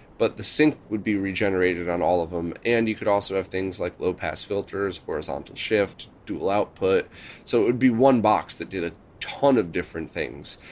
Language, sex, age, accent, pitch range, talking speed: English, male, 30-49, American, 90-120 Hz, 205 wpm